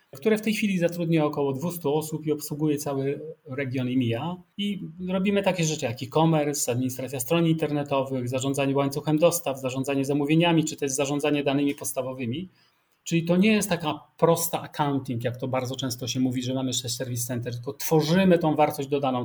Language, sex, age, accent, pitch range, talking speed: Polish, male, 30-49, native, 130-165 Hz, 170 wpm